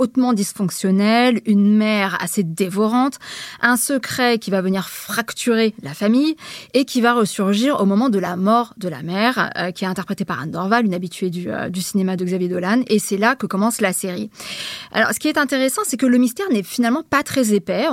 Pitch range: 195-240 Hz